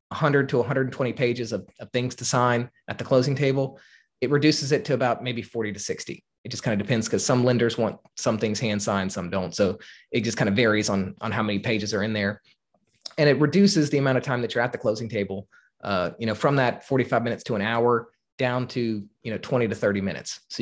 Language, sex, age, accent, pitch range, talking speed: English, male, 20-39, American, 110-130 Hz, 240 wpm